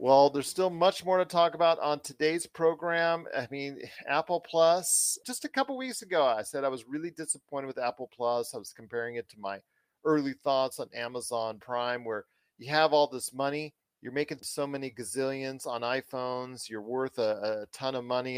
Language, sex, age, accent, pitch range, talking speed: English, male, 40-59, American, 115-145 Hz, 200 wpm